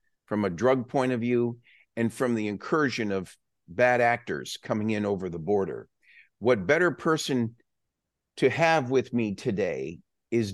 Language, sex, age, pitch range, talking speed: English, male, 50-69, 100-135 Hz, 155 wpm